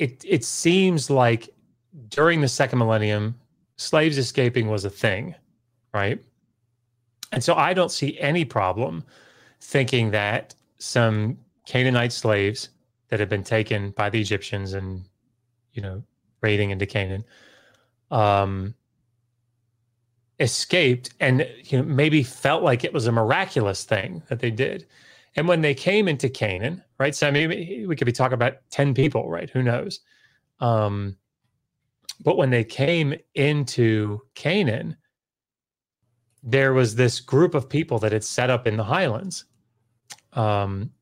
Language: English